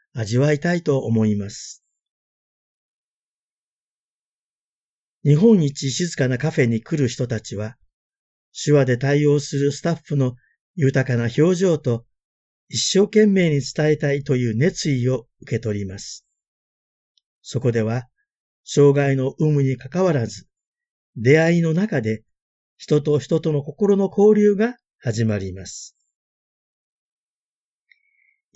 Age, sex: 50-69, male